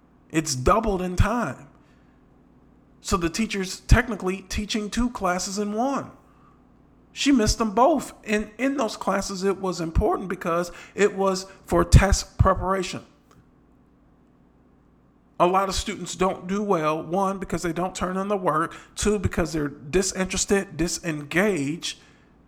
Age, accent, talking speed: 40-59, American, 135 wpm